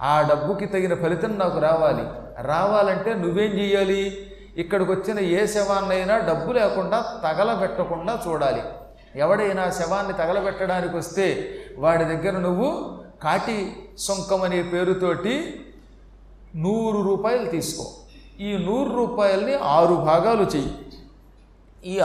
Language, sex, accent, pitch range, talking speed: Telugu, male, native, 175-220 Hz, 100 wpm